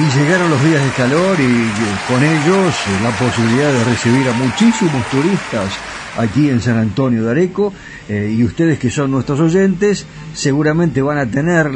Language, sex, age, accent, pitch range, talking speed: Spanish, male, 50-69, Argentinian, 120-160 Hz, 175 wpm